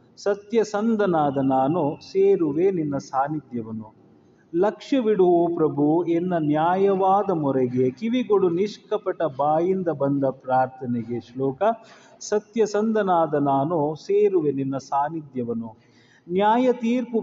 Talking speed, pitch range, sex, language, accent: 80 wpm, 140-205 Hz, male, Kannada, native